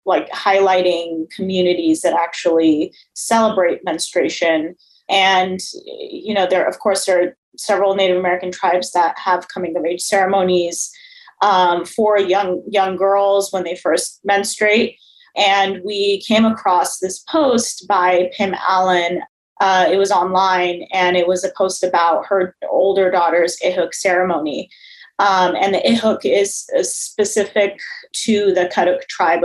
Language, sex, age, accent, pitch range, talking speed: English, female, 20-39, American, 180-210 Hz, 140 wpm